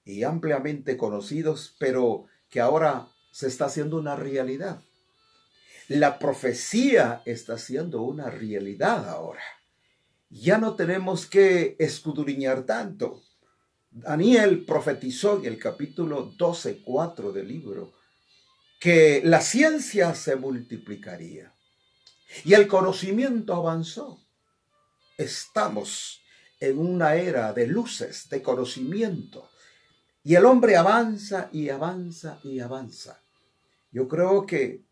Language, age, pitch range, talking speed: Spanish, 50-69, 130-180 Hz, 105 wpm